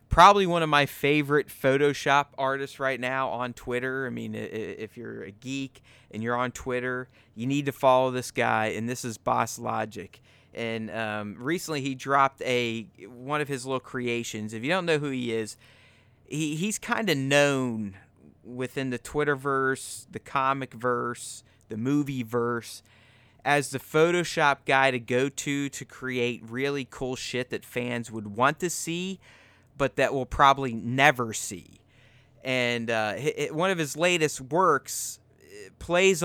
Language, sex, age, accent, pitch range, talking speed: English, male, 30-49, American, 115-140 Hz, 160 wpm